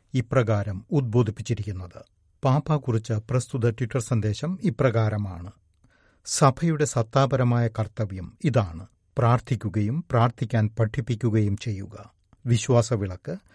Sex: male